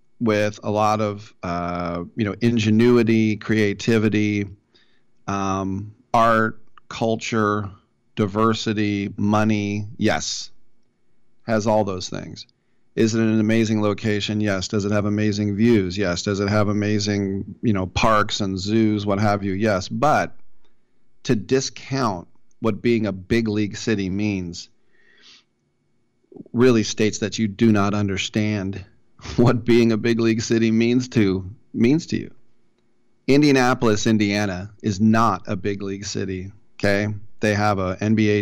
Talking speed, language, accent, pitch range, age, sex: 135 wpm, English, American, 100-115 Hz, 40-59, male